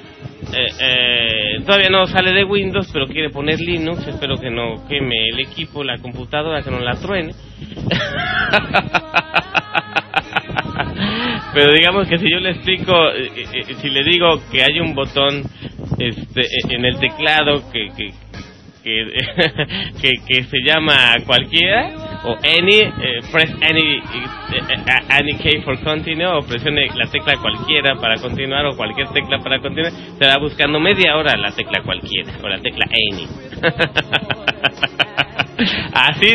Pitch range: 125-160 Hz